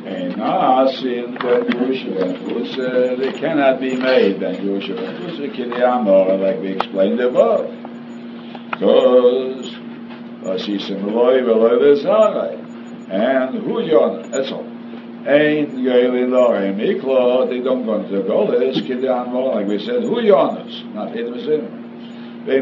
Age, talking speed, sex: 60-79, 145 wpm, male